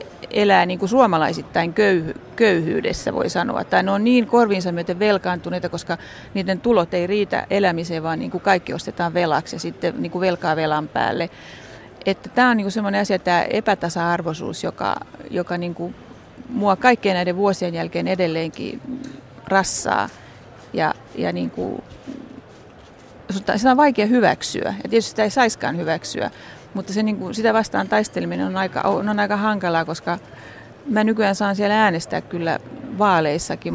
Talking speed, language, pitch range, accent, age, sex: 155 wpm, Finnish, 170-205 Hz, native, 30-49, female